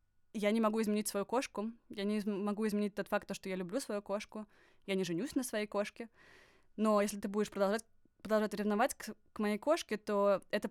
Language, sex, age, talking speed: Russian, female, 20-39, 200 wpm